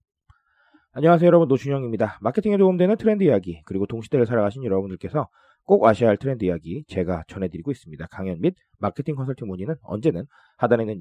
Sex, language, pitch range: male, Korean, 105-175 Hz